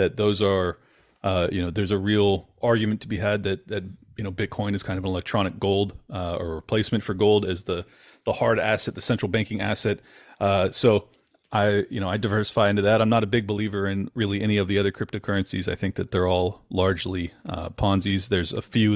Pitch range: 95-115 Hz